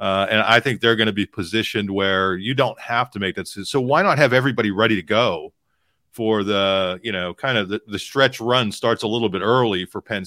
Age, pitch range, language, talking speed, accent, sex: 40-59, 100-125 Hz, English, 240 wpm, American, male